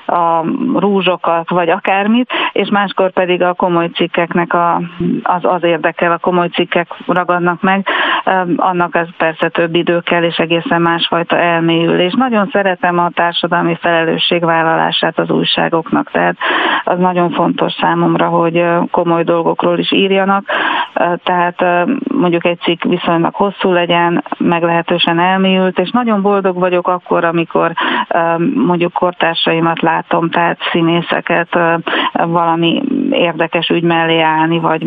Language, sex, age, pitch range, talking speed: Hungarian, female, 40-59, 170-180 Hz, 130 wpm